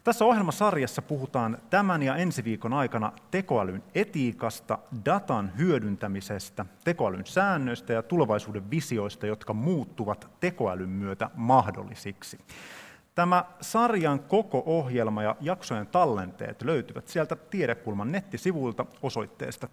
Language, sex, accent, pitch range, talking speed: Finnish, male, native, 105-175 Hz, 105 wpm